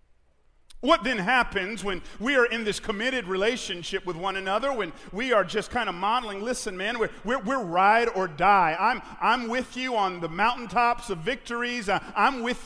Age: 40-59